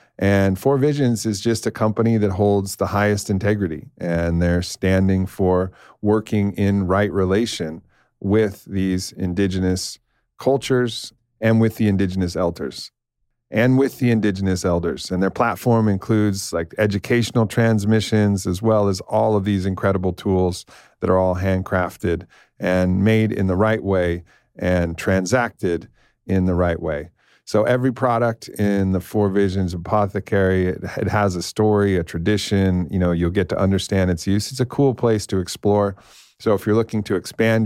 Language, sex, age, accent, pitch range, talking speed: English, male, 40-59, American, 95-110 Hz, 160 wpm